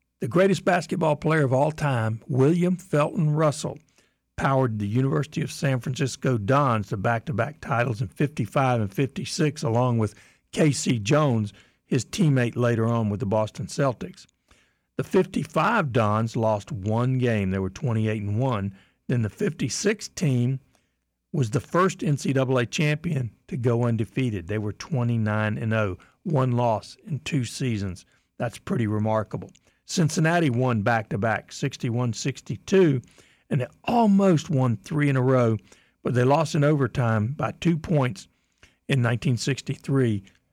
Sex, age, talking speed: male, 60-79, 135 wpm